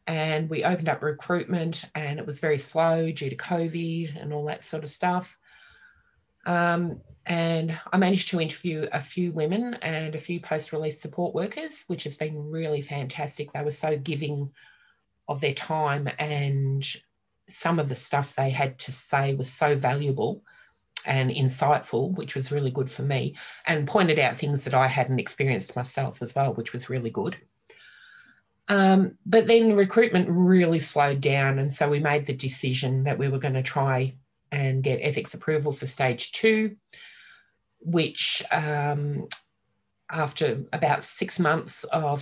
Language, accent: English, Australian